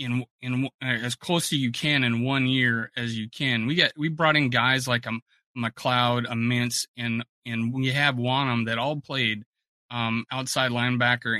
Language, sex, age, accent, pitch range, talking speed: English, male, 30-49, American, 115-130 Hz, 180 wpm